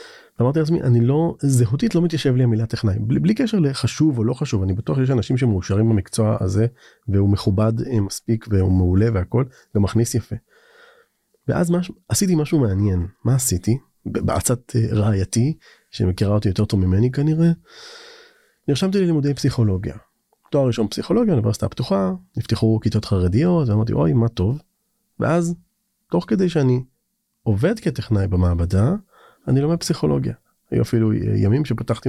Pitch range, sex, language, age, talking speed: 110-155 Hz, male, Hebrew, 30-49, 145 wpm